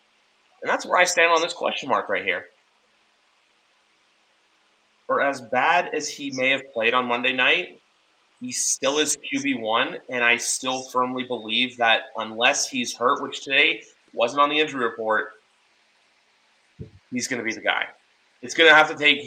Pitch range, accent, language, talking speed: 120-150 Hz, American, English, 170 wpm